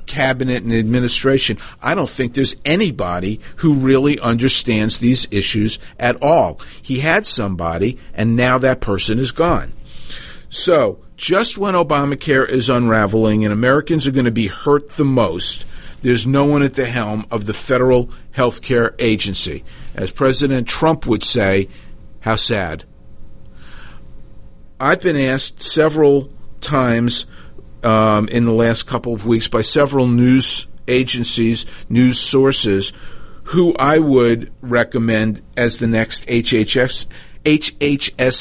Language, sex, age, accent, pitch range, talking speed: English, male, 50-69, American, 110-140 Hz, 135 wpm